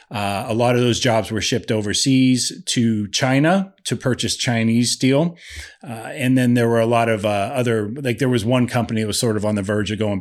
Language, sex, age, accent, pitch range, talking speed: English, male, 30-49, American, 110-135 Hz, 230 wpm